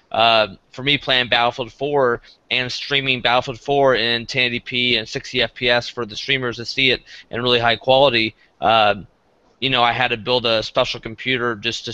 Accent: American